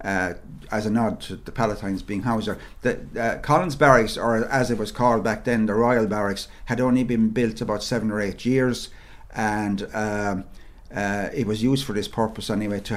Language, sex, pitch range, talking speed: English, male, 105-130 Hz, 200 wpm